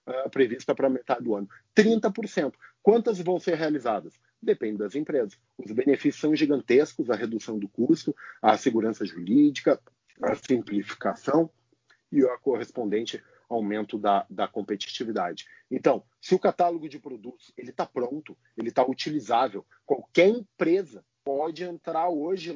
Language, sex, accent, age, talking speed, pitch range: Portuguese, male, Brazilian, 40-59, 135 wpm, 130-205 Hz